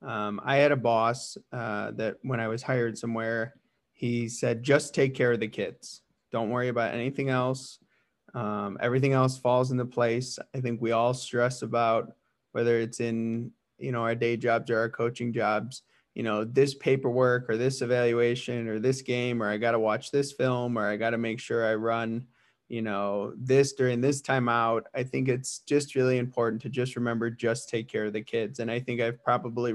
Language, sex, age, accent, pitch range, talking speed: English, male, 20-39, American, 115-130 Hz, 200 wpm